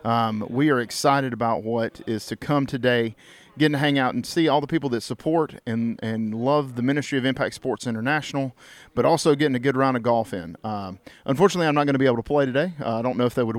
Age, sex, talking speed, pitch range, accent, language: 40-59, male, 250 wpm, 120-150 Hz, American, English